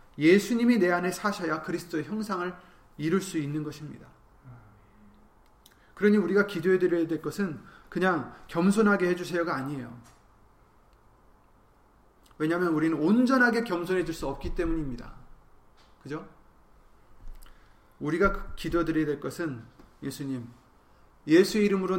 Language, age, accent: Korean, 30-49, native